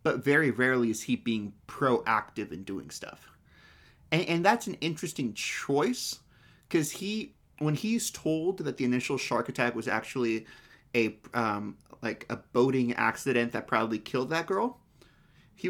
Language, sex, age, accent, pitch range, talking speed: English, male, 30-49, American, 125-165 Hz, 155 wpm